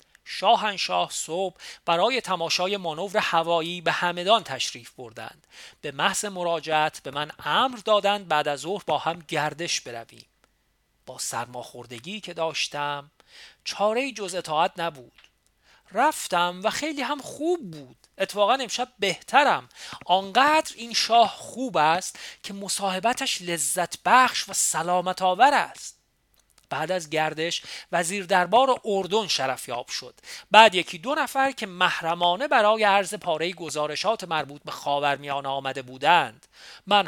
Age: 40-59